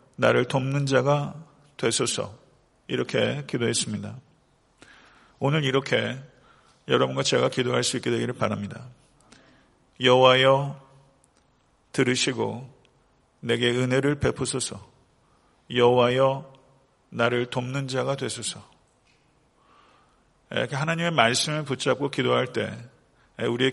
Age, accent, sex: 40-59, native, male